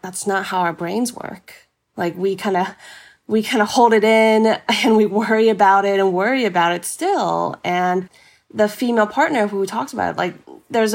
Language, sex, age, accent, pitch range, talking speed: English, female, 20-39, American, 170-210 Hz, 195 wpm